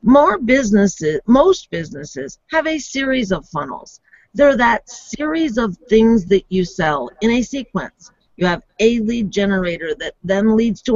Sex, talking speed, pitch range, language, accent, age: female, 160 wpm, 185-270 Hz, English, American, 50-69